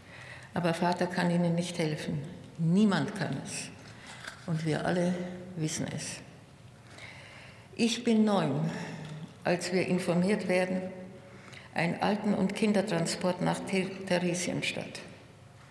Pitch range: 135-195 Hz